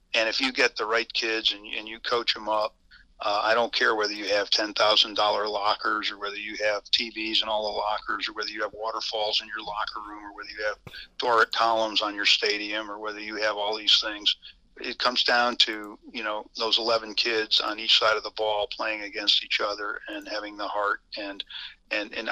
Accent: American